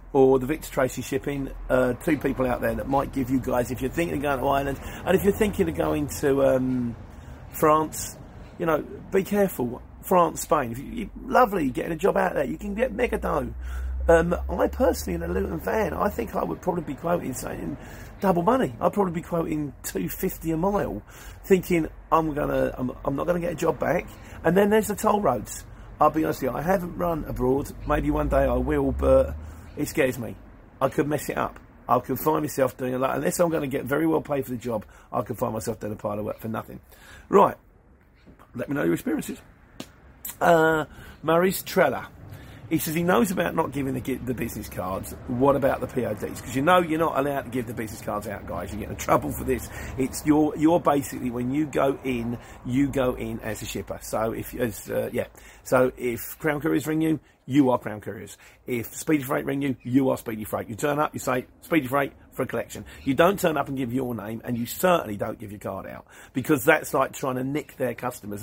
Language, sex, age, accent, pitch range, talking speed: English, male, 40-59, British, 115-155 Hz, 225 wpm